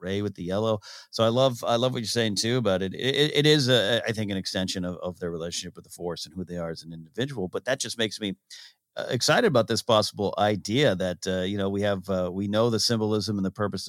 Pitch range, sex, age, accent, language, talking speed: 95-135 Hz, male, 40-59, American, English, 265 wpm